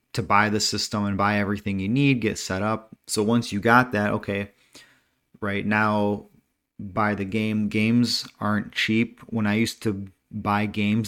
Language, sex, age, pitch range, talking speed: English, male, 30-49, 100-115 Hz, 175 wpm